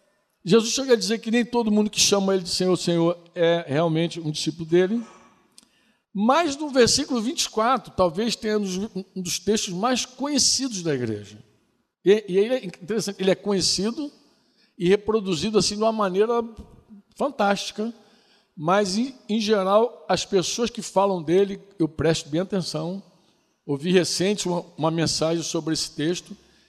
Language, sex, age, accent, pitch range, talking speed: Portuguese, male, 60-79, Brazilian, 165-220 Hz, 155 wpm